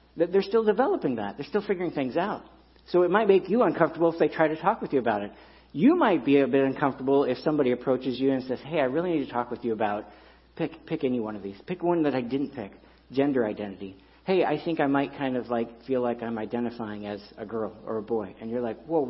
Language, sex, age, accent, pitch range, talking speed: English, male, 50-69, American, 115-175 Hz, 260 wpm